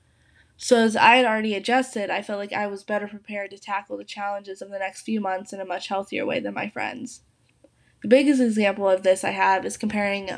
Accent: American